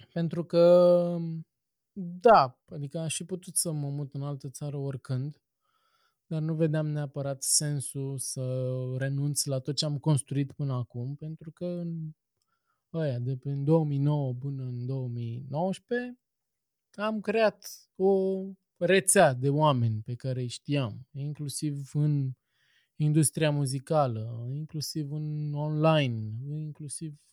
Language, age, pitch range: Romanian, 20-39, 130-170 Hz